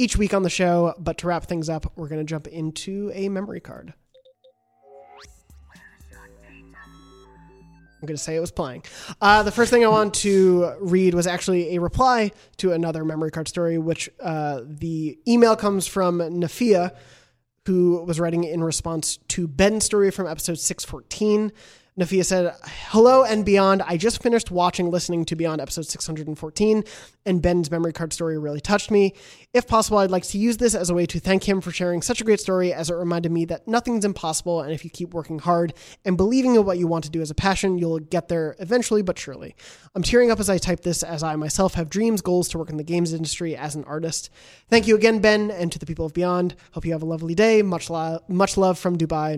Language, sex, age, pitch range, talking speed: English, male, 20-39, 165-200 Hz, 210 wpm